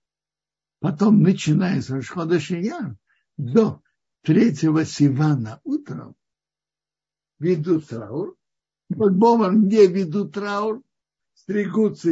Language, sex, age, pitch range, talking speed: Russian, male, 60-79, 155-220 Hz, 75 wpm